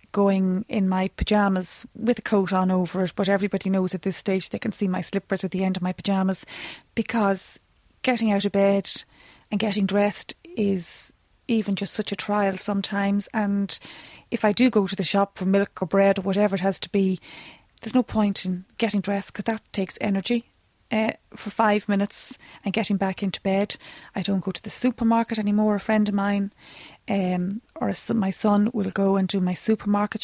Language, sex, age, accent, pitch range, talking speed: English, female, 30-49, Irish, 195-215 Hz, 200 wpm